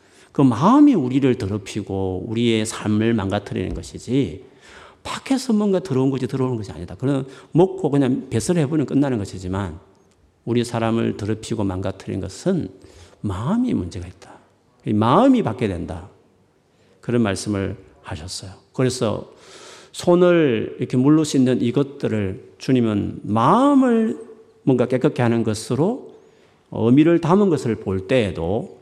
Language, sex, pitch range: Korean, male, 100-140 Hz